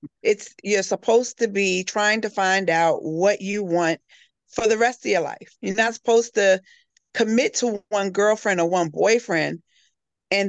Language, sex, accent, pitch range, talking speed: English, female, American, 170-225 Hz, 170 wpm